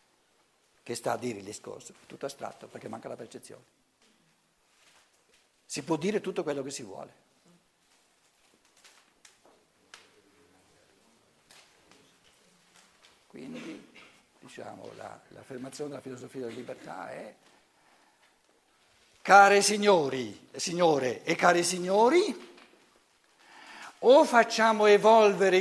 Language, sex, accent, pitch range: Italian, male, native, 145-220 Hz